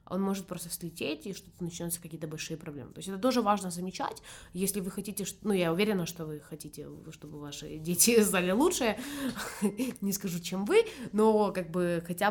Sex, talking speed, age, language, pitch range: female, 185 wpm, 20-39, Ukrainian, 160-195 Hz